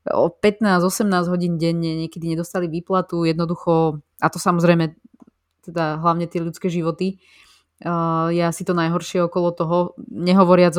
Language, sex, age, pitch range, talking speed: Slovak, female, 20-39, 165-190 Hz, 120 wpm